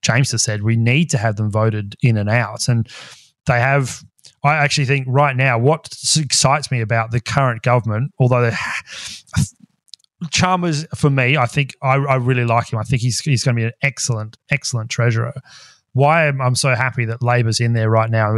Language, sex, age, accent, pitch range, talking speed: English, male, 30-49, Australian, 115-135 Hz, 195 wpm